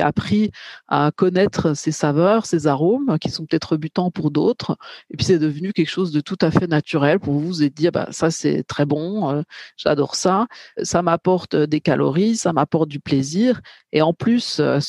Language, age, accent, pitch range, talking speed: French, 40-59, French, 150-190 Hz, 200 wpm